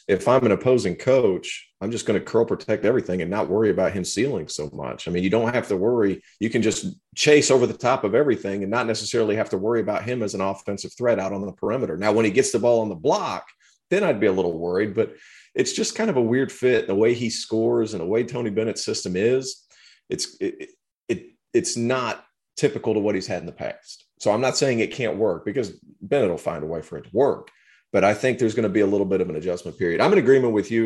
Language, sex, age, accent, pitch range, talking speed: English, male, 40-59, American, 95-120 Hz, 260 wpm